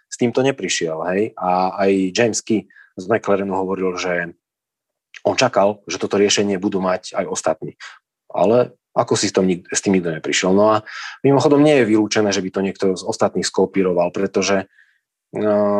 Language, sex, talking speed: Slovak, male, 170 wpm